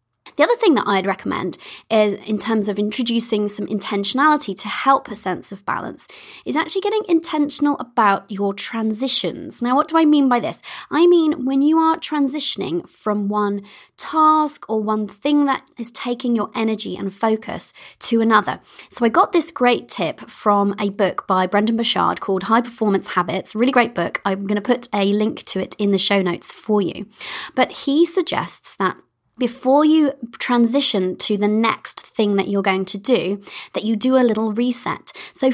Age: 20-39